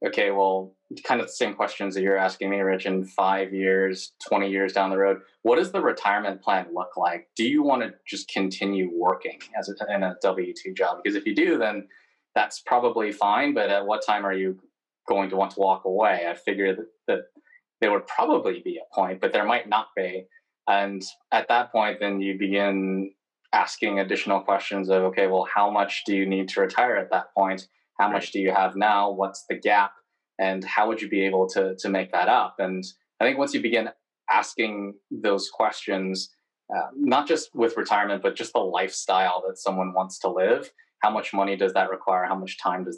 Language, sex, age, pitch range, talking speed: English, male, 20-39, 95-105 Hz, 210 wpm